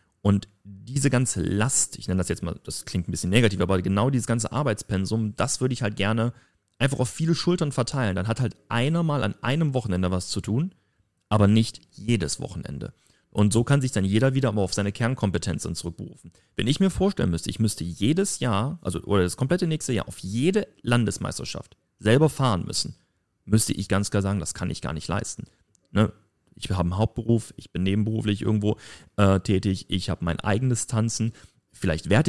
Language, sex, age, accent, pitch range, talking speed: German, male, 40-59, German, 95-125 Hz, 195 wpm